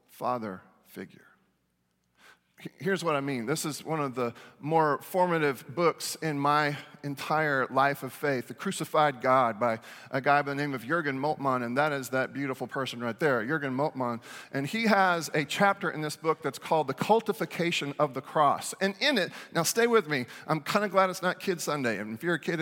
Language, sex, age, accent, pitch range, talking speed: English, male, 40-59, American, 150-225 Hz, 205 wpm